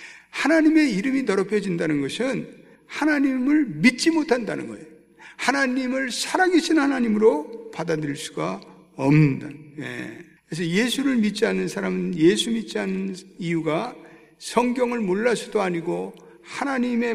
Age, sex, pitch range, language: 60-79, male, 155-240 Hz, Korean